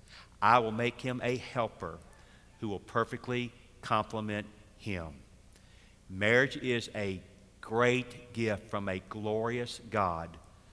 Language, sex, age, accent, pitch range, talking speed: English, male, 50-69, American, 100-120 Hz, 110 wpm